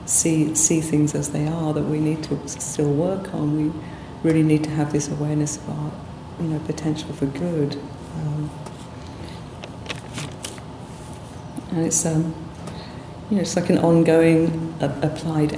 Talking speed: 150 wpm